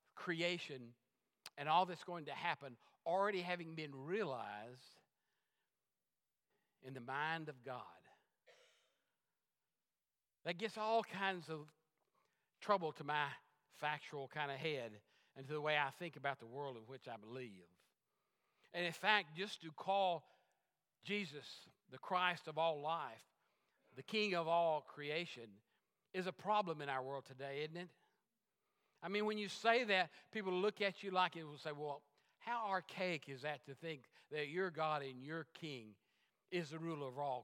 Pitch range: 150-195 Hz